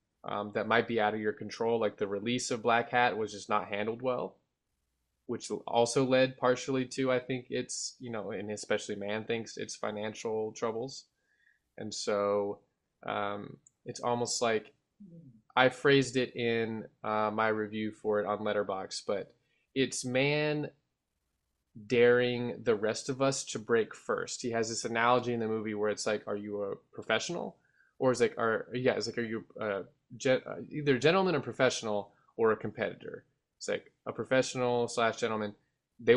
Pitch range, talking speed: 105-130 Hz, 170 wpm